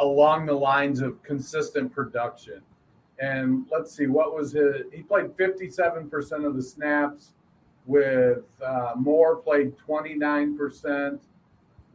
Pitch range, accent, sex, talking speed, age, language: 130-155 Hz, American, male, 115 wpm, 50-69, English